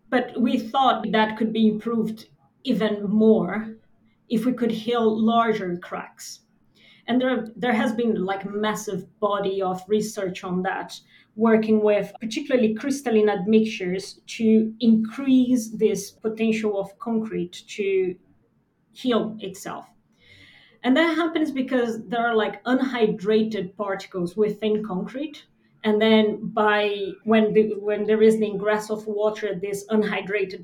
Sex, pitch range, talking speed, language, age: female, 200-225 Hz, 130 wpm, English, 30-49